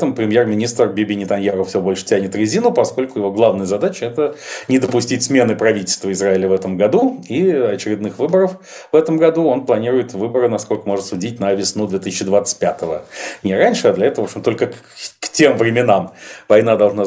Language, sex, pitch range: Russian, male, 100-125 Hz